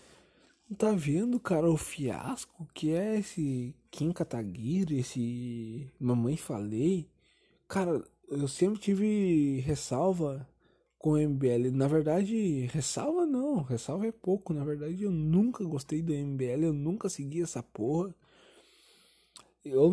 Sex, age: male, 20-39